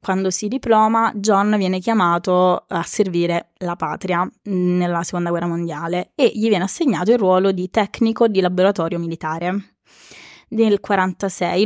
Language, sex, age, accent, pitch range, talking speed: Italian, female, 20-39, native, 175-215 Hz, 140 wpm